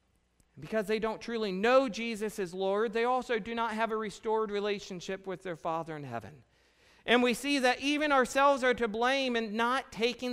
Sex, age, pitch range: male, 40-59, 185-235 Hz